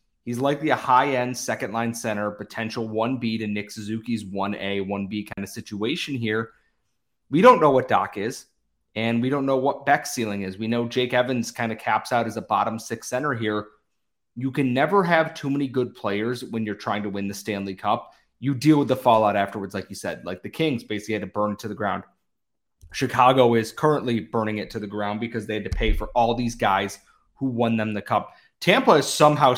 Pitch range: 105-125 Hz